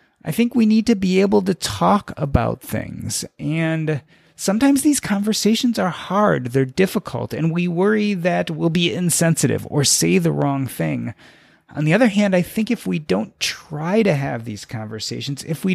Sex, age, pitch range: male, 30-49, 130-175 Hz